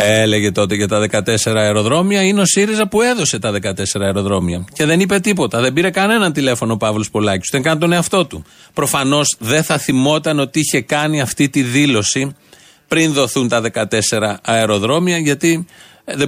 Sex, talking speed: male, 175 wpm